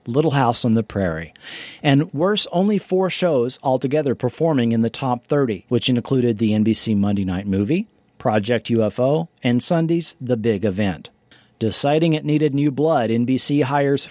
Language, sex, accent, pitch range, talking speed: English, male, American, 115-155 Hz, 155 wpm